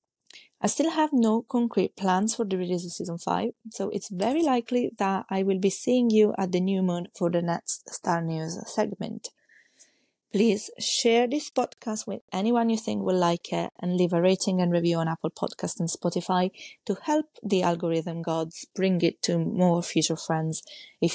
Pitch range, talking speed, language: 175-230 Hz, 185 wpm, English